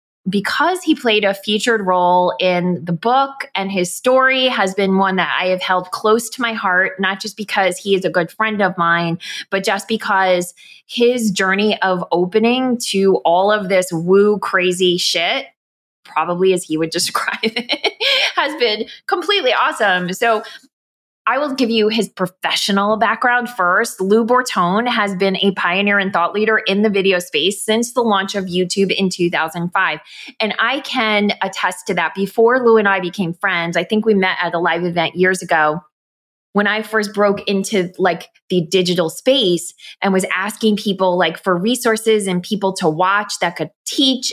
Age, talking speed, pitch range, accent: 20-39, 175 wpm, 185-225 Hz, American